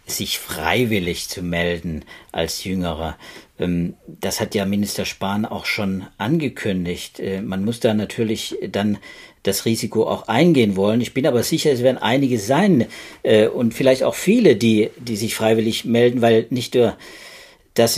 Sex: male